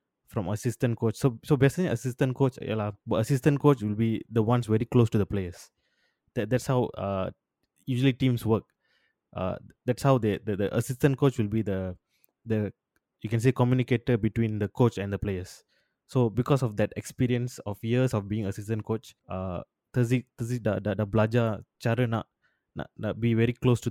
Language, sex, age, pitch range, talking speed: Malay, male, 20-39, 105-125 Hz, 180 wpm